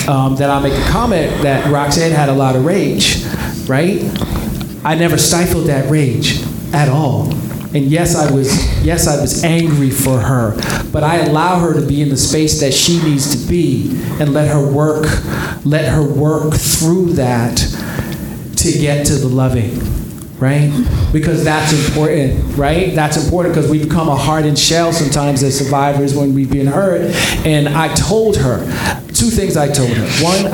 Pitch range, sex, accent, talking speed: 130-155 Hz, male, American, 175 wpm